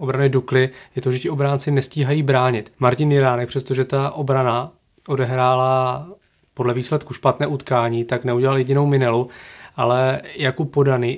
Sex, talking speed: male, 140 wpm